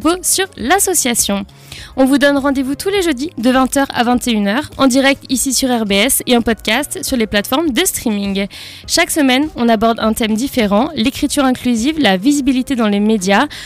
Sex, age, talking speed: female, 20-39, 175 wpm